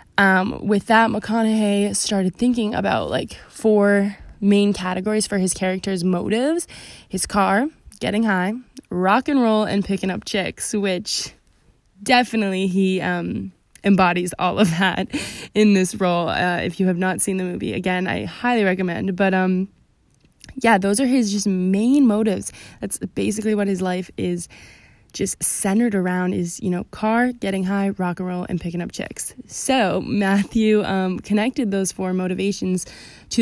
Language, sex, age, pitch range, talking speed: English, female, 10-29, 185-215 Hz, 160 wpm